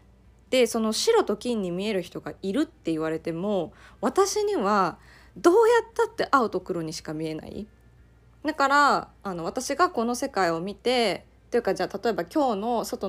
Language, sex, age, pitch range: Japanese, female, 20-39, 195-300 Hz